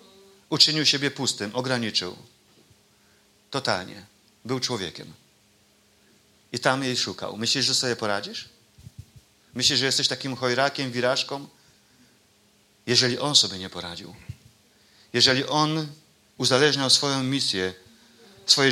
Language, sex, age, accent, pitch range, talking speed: Polish, male, 40-59, native, 105-140 Hz, 105 wpm